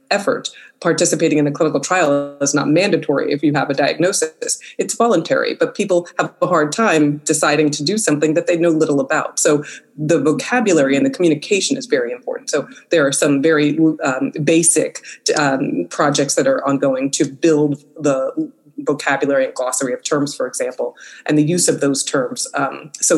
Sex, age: female, 30-49